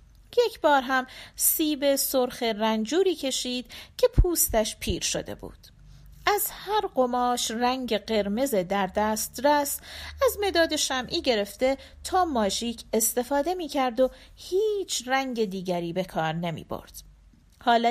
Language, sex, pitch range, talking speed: Persian, female, 195-290 Hz, 125 wpm